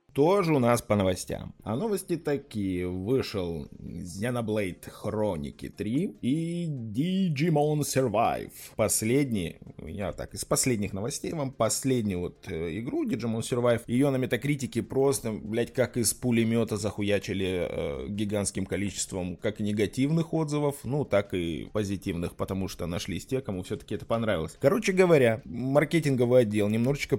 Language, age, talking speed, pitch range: Russian, 20-39, 130 wpm, 105-140 Hz